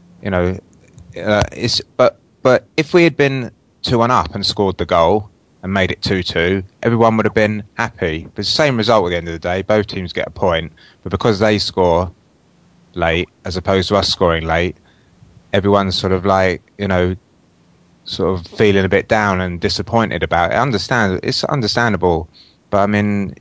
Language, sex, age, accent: English, male, 20-39, British